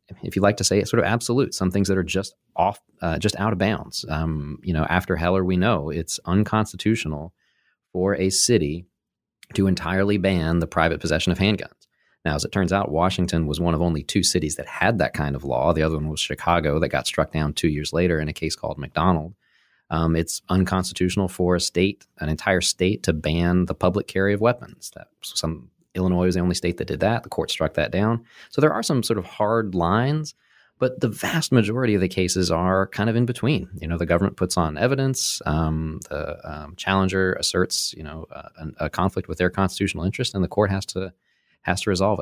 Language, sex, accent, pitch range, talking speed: English, male, American, 85-100 Hz, 220 wpm